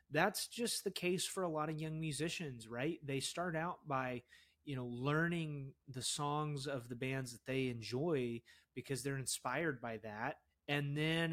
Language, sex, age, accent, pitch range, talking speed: English, male, 30-49, American, 125-150 Hz, 175 wpm